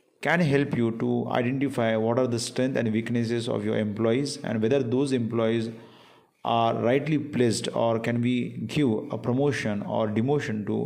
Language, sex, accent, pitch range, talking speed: Hindi, male, native, 115-135 Hz, 165 wpm